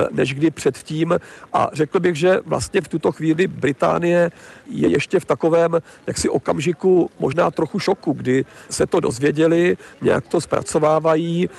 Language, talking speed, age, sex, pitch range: Czech, 145 wpm, 50-69, male, 145-165 Hz